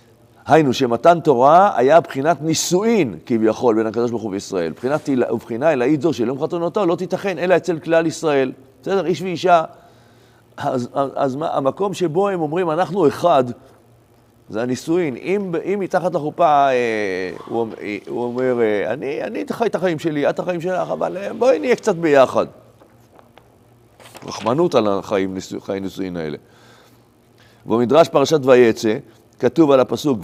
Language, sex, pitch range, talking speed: Hebrew, male, 120-165 Hz, 145 wpm